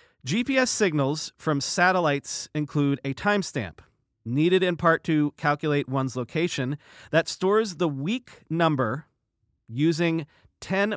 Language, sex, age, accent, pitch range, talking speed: English, male, 40-59, American, 130-175 Hz, 115 wpm